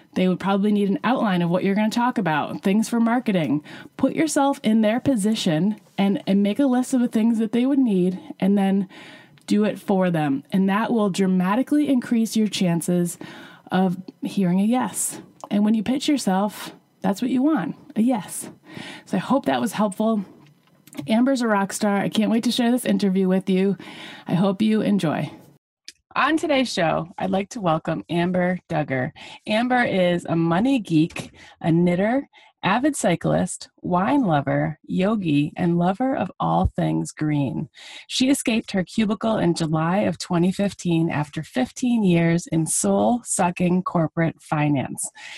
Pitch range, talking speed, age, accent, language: 170-225 Hz, 165 wpm, 30-49, American, English